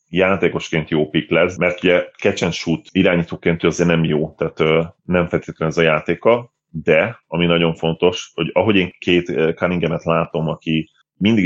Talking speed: 150 wpm